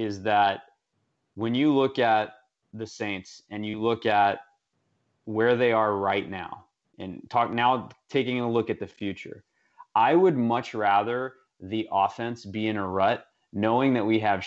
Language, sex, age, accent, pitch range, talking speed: English, male, 30-49, American, 110-140 Hz, 165 wpm